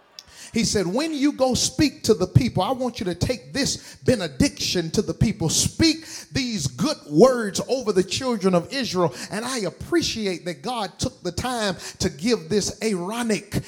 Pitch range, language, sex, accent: 185-240 Hz, English, male, American